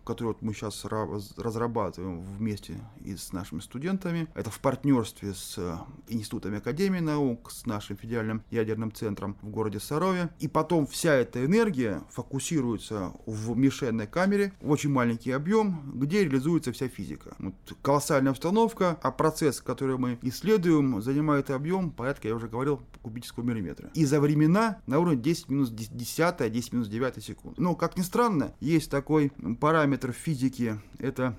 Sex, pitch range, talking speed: male, 120-155 Hz, 145 wpm